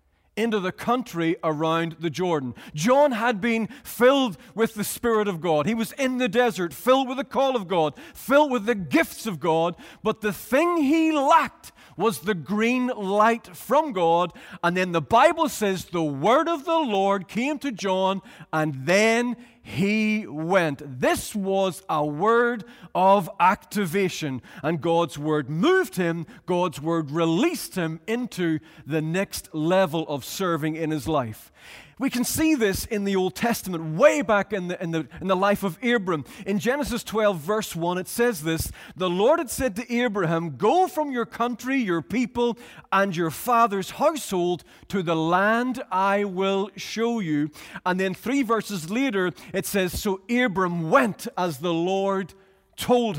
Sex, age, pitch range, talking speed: male, 40-59, 170-240 Hz, 165 wpm